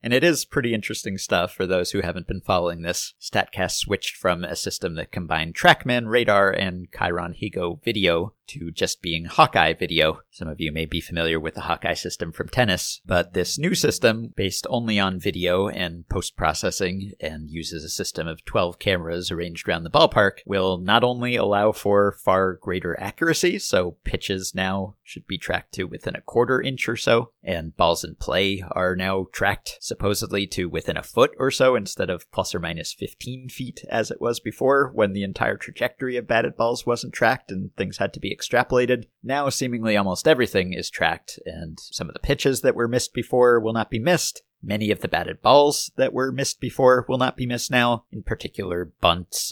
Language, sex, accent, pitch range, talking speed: English, male, American, 90-125 Hz, 195 wpm